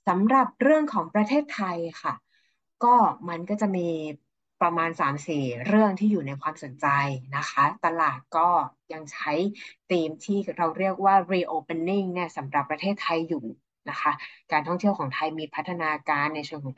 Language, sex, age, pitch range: English, female, 20-39, 155-195 Hz